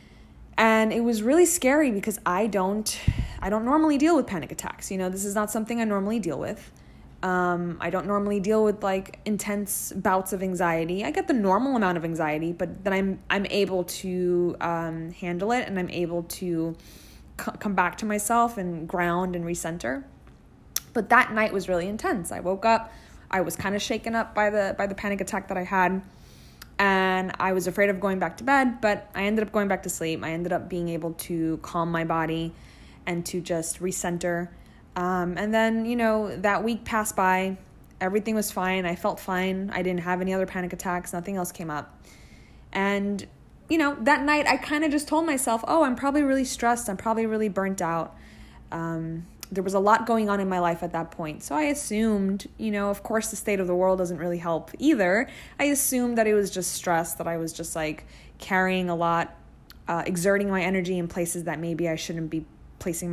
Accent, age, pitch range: American, 20-39, 175-215 Hz